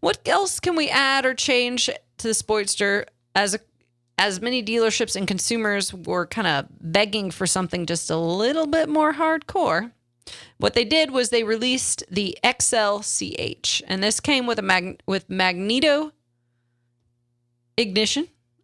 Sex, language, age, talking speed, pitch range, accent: female, English, 30-49, 150 wpm, 160-235 Hz, American